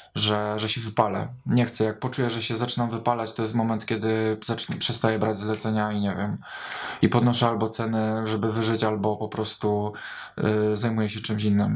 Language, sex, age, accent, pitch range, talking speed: Polish, male, 20-39, native, 110-125 Hz, 185 wpm